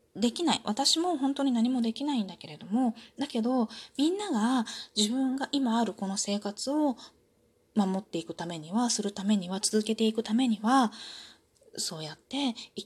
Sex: female